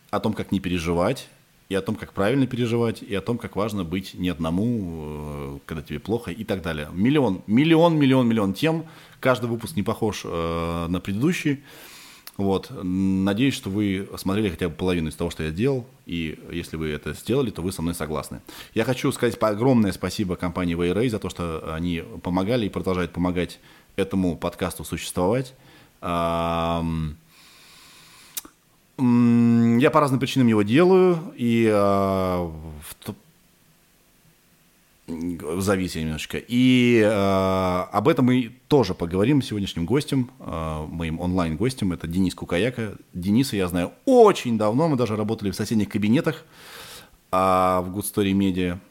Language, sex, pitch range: Russian, male, 85-120 Hz